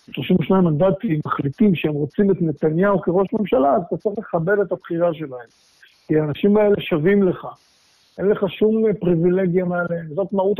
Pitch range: 160-200 Hz